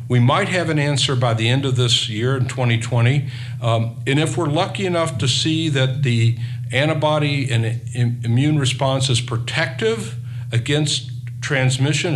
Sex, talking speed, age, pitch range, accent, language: male, 155 wpm, 60-79, 120-135 Hz, American, English